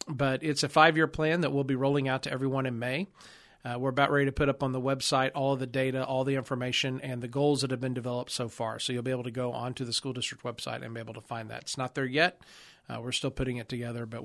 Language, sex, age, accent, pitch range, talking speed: English, male, 40-59, American, 120-140 Hz, 280 wpm